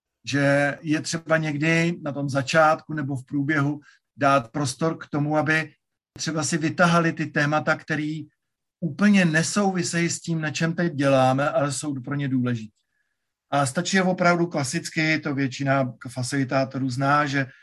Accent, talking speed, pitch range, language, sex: native, 150 wpm, 135-165 Hz, Czech, male